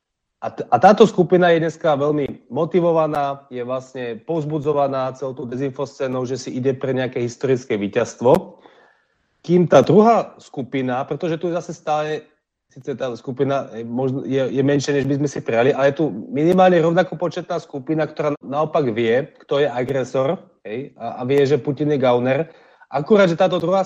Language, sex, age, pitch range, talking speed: Slovak, male, 30-49, 120-150 Hz, 165 wpm